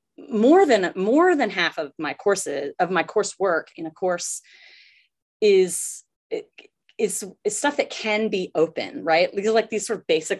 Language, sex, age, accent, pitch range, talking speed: English, female, 30-49, American, 170-220 Hz, 160 wpm